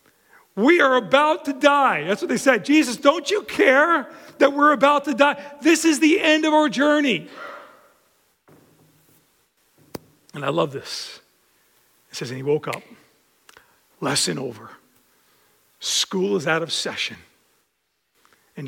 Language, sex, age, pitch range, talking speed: English, male, 40-59, 180-300 Hz, 140 wpm